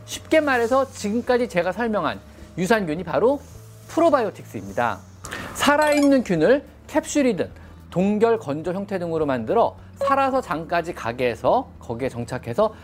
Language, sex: Korean, male